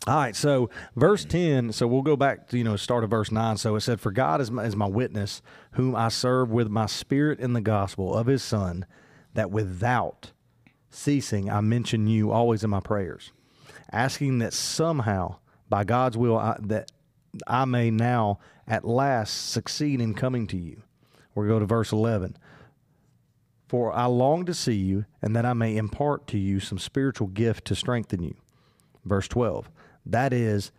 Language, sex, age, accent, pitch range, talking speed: English, male, 40-59, American, 105-130 Hz, 175 wpm